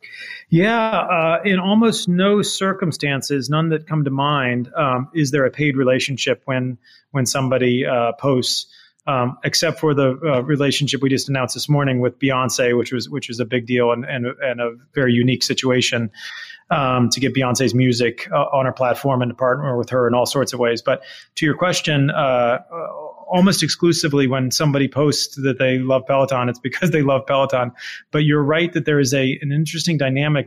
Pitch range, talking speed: 125-150 Hz, 195 wpm